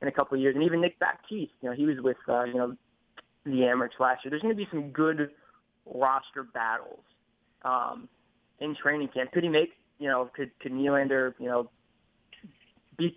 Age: 20-39